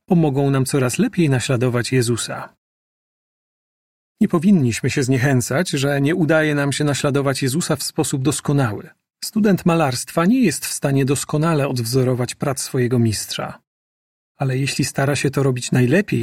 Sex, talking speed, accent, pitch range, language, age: male, 140 wpm, native, 125-160 Hz, Polish, 40-59